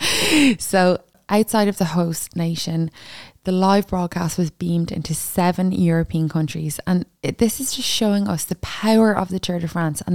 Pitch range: 155-180 Hz